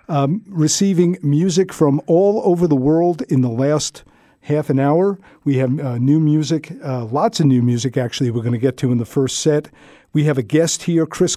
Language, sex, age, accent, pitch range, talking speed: English, male, 50-69, American, 130-155 Hz, 210 wpm